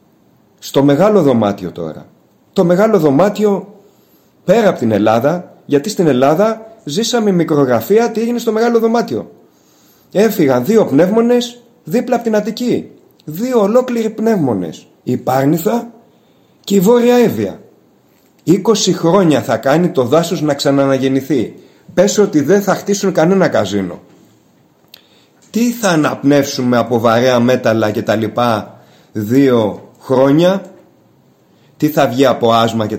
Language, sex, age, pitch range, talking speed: Greek, male, 30-49, 125-205 Hz, 125 wpm